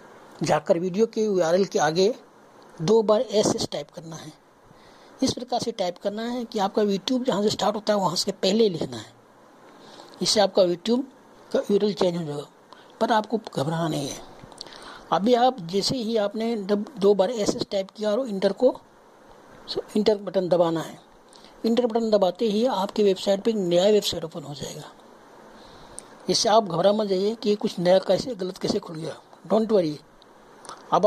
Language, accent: Hindi, native